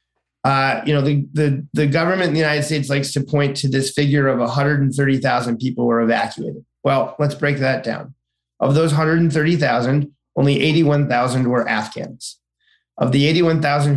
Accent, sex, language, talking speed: American, male, English, 160 wpm